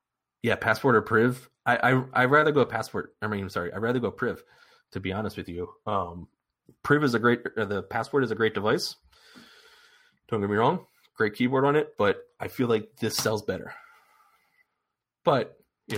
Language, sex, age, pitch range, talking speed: English, male, 30-49, 95-135 Hz, 195 wpm